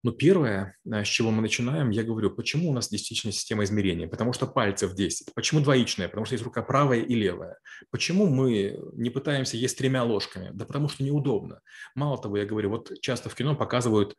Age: 30-49